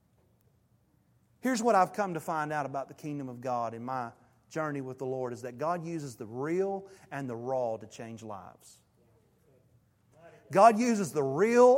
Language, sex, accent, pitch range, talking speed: English, male, American, 205-275 Hz, 175 wpm